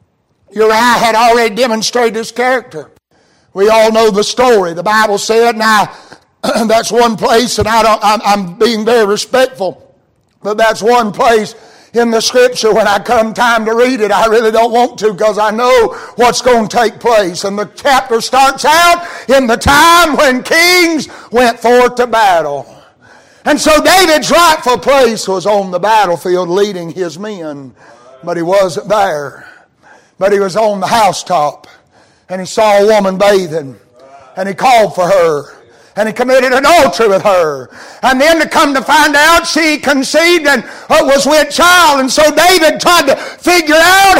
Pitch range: 210-270 Hz